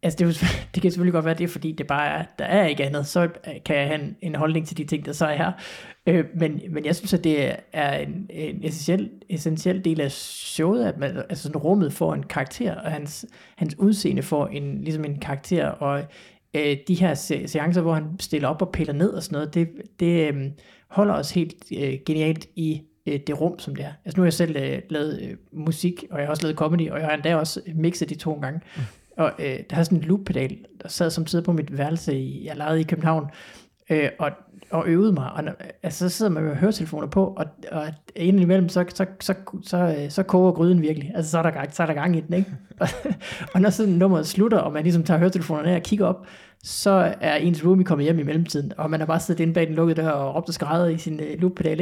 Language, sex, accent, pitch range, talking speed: Danish, male, native, 155-180 Hz, 225 wpm